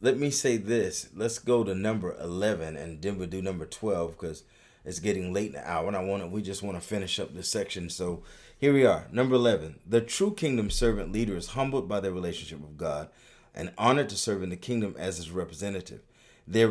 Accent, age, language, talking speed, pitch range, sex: American, 30-49, English, 215 wpm, 90-120 Hz, male